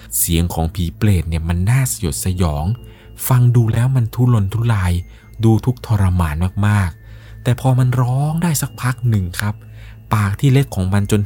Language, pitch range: Thai, 90-115 Hz